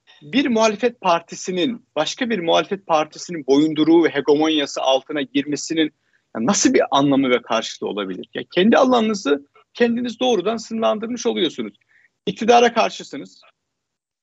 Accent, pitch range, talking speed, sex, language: native, 135-225 Hz, 115 wpm, male, Turkish